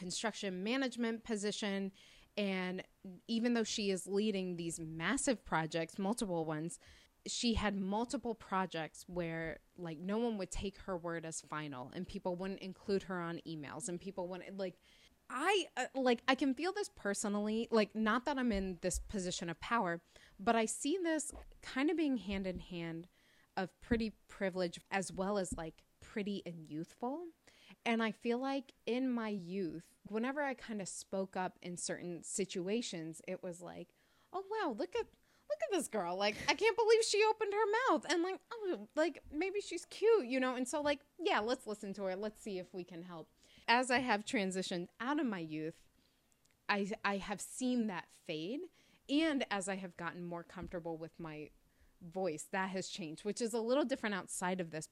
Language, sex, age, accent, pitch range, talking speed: English, female, 20-39, American, 180-255 Hz, 185 wpm